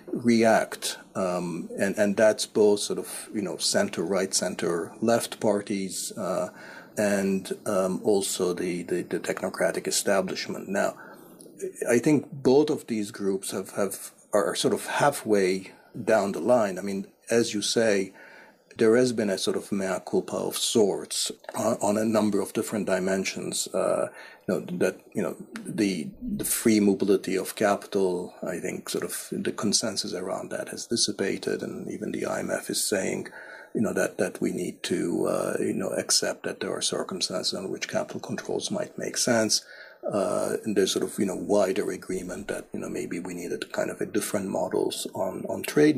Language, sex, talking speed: English, male, 175 wpm